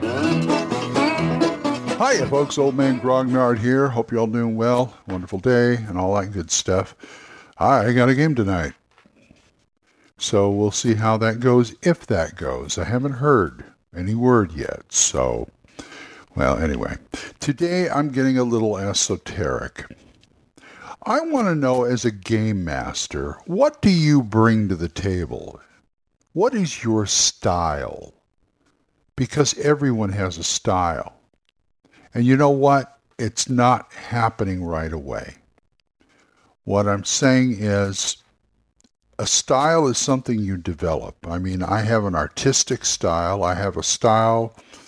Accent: American